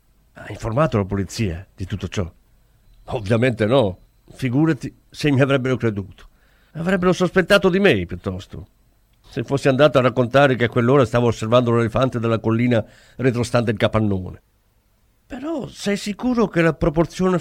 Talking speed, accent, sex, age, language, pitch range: 140 wpm, native, male, 50-69, Italian, 105-160 Hz